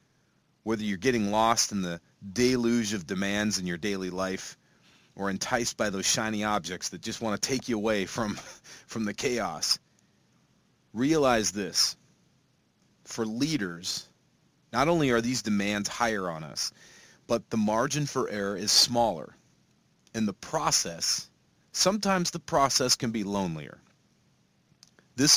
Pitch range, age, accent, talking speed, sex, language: 100-130 Hz, 40-59, American, 140 wpm, male, English